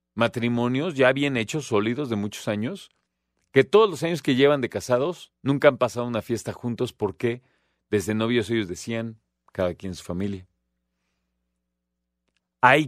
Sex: male